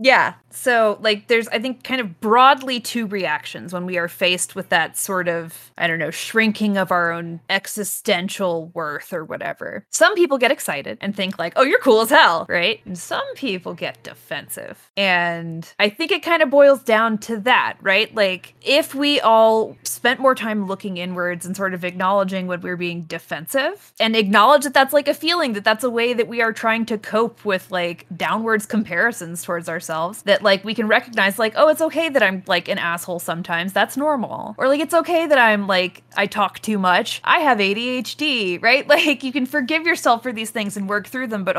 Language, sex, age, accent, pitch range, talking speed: English, female, 20-39, American, 180-240 Hz, 210 wpm